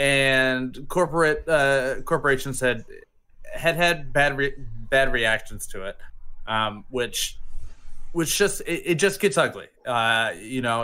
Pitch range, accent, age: 110-145 Hz, American, 20-39